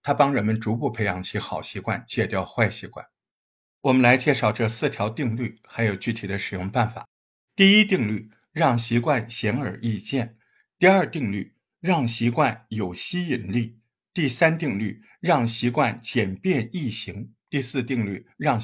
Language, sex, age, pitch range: Chinese, male, 50-69, 110-140 Hz